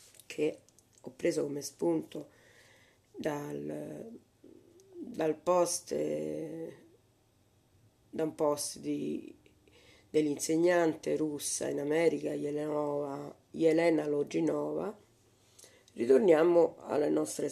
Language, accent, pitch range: Italian, native, 145-205 Hz